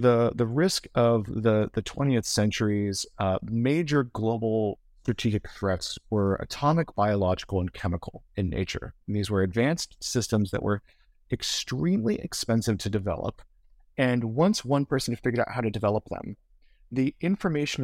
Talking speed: 145 wpm